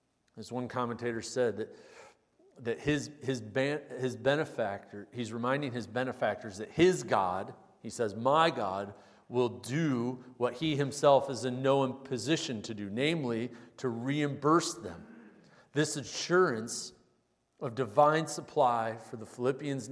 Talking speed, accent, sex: 135 wpm, American, male